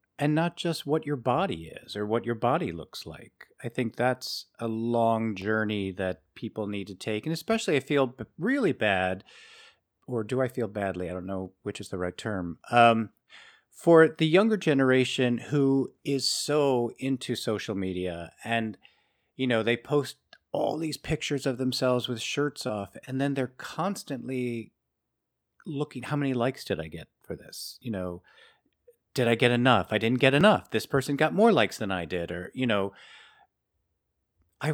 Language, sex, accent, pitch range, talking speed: English, male, American, 95-130 Hz, 175 wpm